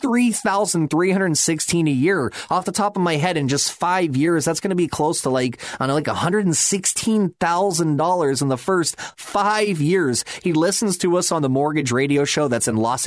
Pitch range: 140-180 Hz